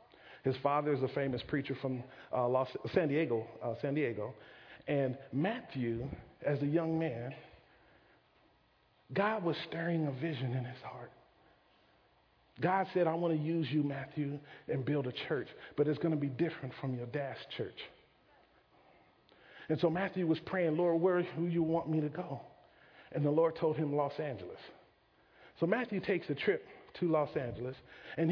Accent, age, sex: American, 40-59, male